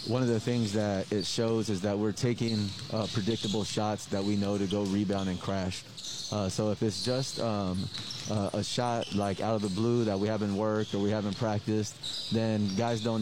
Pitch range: 100-115 Hz